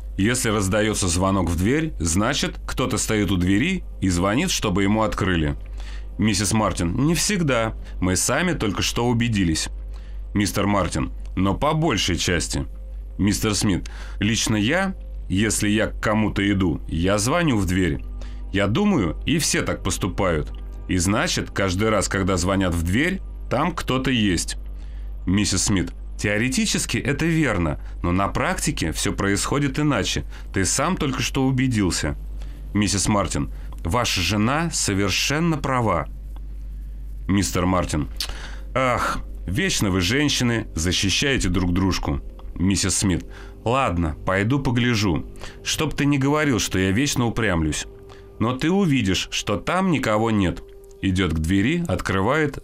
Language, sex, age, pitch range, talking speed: Russian, male, 30-49, 90-125 Hz, 130 wpm